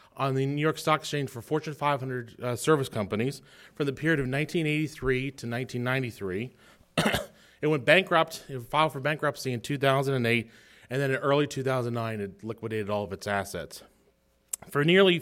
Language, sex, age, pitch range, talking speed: English, male, 30-49, 115-155 Hz, 160 wpm